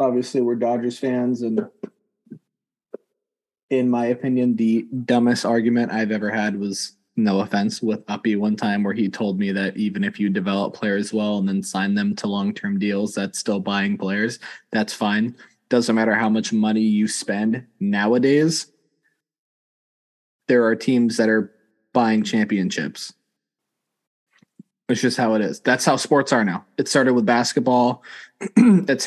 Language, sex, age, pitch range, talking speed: English, male, 20-39, 110-145 Hz, 155 wpm